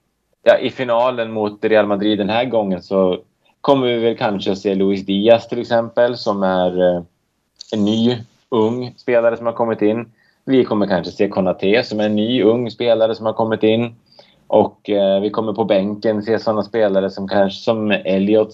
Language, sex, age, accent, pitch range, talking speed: Swedish, male, 20-39, Norwegian, 95-110 Hz, 190 wpm